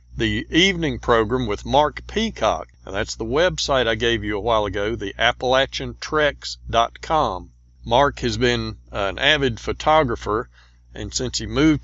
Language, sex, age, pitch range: English, male, 50-69, 100-140 Hz